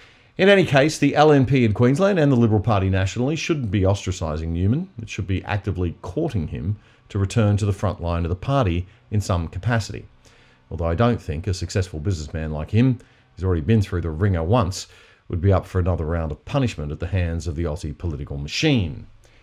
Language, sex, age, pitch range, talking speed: English, male, 40-59, 85-115 Hz, 205 wpm